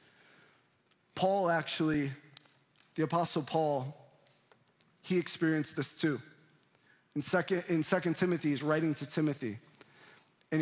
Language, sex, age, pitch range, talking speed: English, male, 20-39, 155-195 Hz, 105 wpm